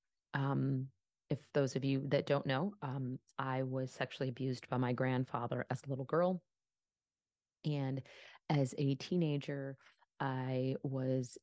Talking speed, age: 135 wpm, 30-49